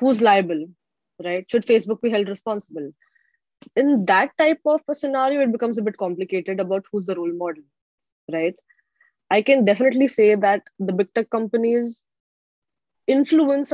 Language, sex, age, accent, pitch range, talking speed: English, female, 20-39, Indian, 200-255 Hz, 155 wpm